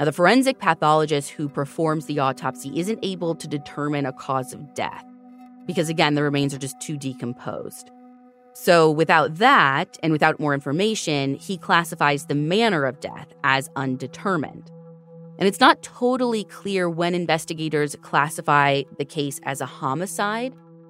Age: 20-39